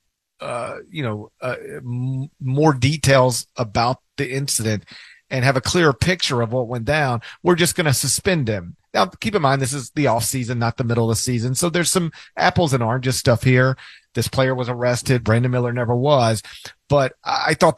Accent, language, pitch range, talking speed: American, English, 120-155 Hz, 205 wpm